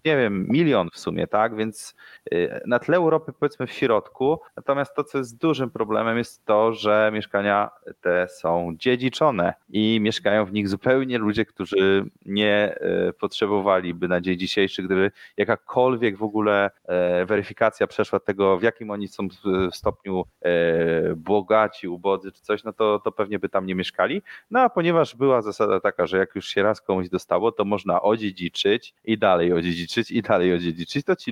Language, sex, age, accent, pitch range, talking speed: Polish, male, 30-49, native, 95-120 Hz, 165 wpm